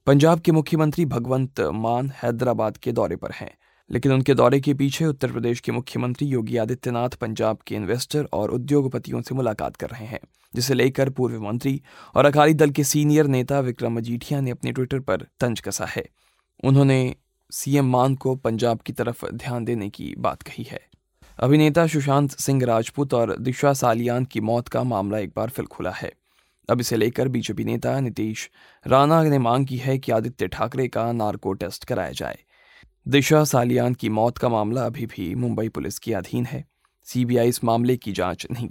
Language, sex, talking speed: Hindi, male, 180 wpm